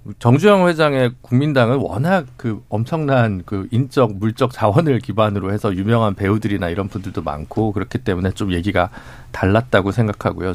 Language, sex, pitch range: Korean, male, 110-155 Hz